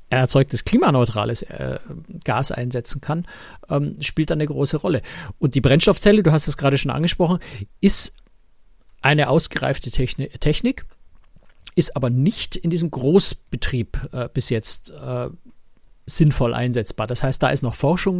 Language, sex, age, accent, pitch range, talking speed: German, male, 50-69, German, 125-160 Hz, 130 wpm